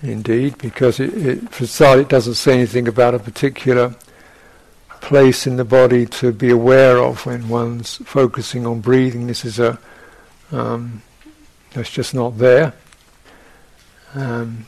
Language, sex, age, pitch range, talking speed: English, male, 60-79, 120-130 Hz, 145 wpm